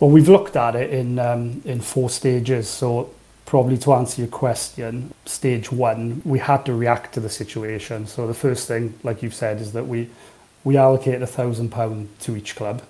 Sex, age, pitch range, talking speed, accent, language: male, 30-49, 120-135 Hz, 200 wpm, British, English